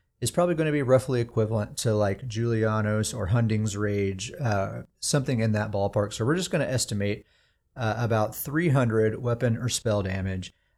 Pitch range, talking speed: 110-135 Hz, 175 wpm